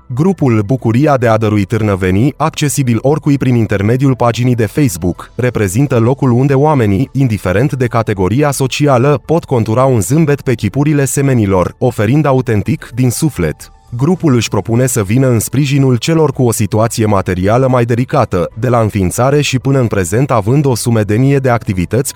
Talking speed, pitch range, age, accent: 155 wpm, 110-140 Hz, 30-49, native